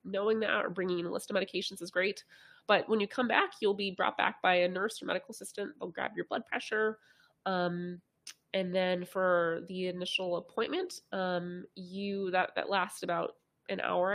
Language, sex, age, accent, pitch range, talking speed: English, female, 20-39, American, 175-215 Hz, 195 wpm